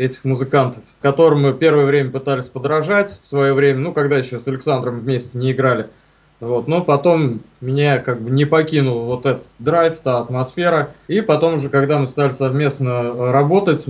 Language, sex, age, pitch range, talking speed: Russian, male, 20-39, 125-150 Hz, 175 wpm